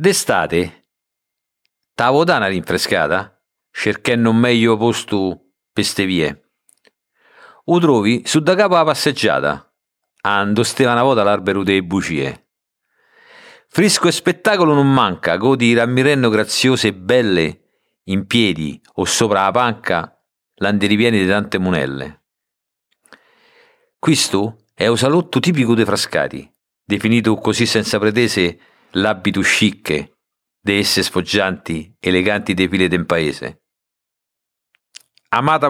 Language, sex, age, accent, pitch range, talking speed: Italian, male, 50-69, native, 100-130 Hz, 110 wpm